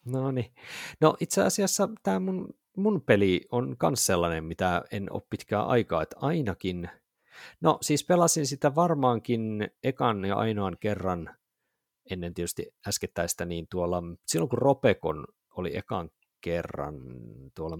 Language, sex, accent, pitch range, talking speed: Finnish, male, native, 85-120 Hz, 130 wpm